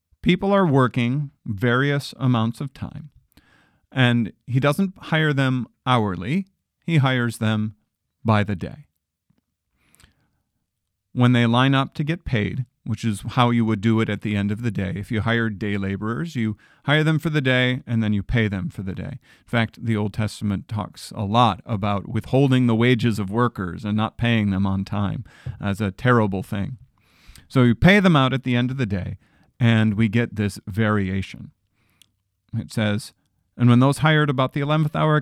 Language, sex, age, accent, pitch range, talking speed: English, male, 40-59, American, 105-130 Hz, 185 wpm